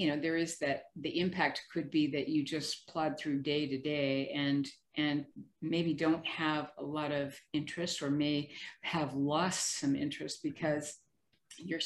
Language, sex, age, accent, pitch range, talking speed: English, female, 50-69, American, 150-185 Hz, 165 wpm